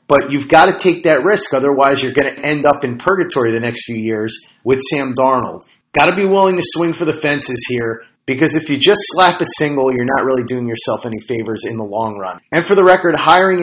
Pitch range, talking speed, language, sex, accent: 120-165 Hz, 240 wpm, English, male, American